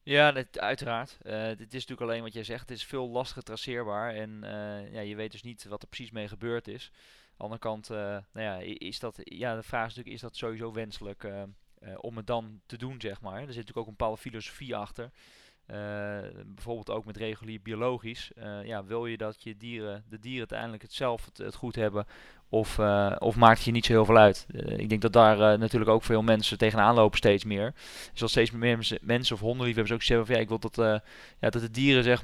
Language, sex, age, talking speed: Dutch, male, 20-39, 220 wpm